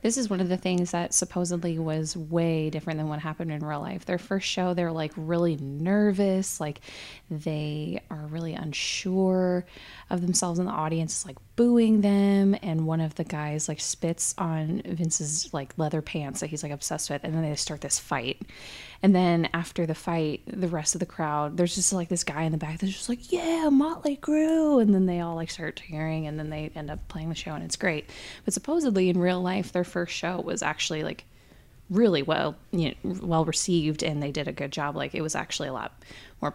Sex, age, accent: female, 20-39, American